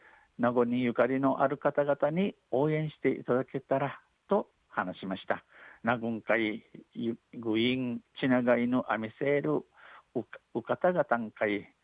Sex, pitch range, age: male, 115-140 Hz, 60-79